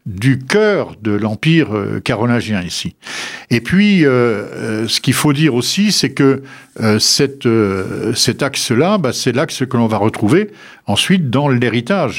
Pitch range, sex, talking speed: 110-150 Hz, male, 145 wpm